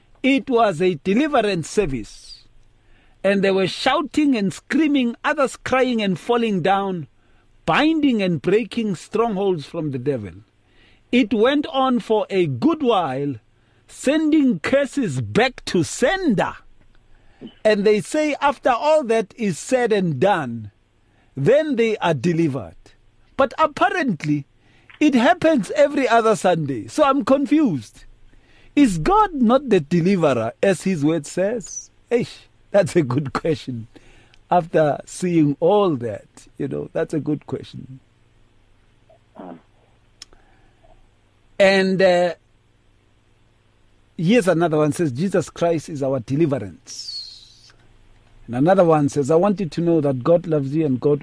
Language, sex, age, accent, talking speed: English, male, 50-69, South African, 125 wpm